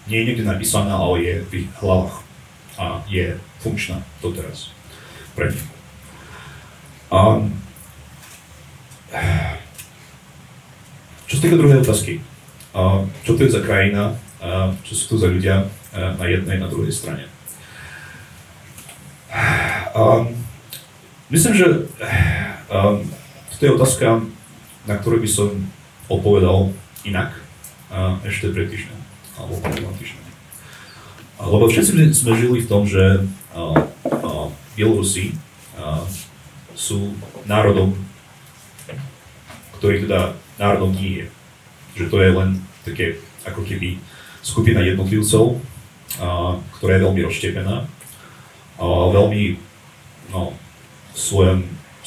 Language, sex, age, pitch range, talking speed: Slovak, male, 30-49, 95-115 Hz, 100 wpm